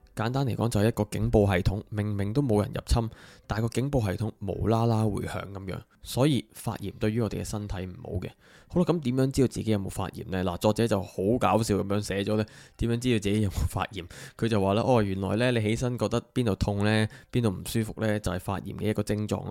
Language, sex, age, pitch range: Chinese, male, 20-39, 95-115 Hz